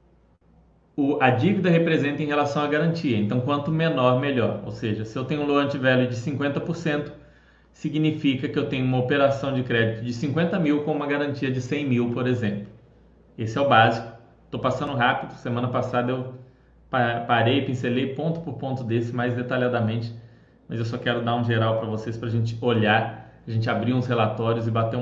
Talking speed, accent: 180 wpm, Brazilian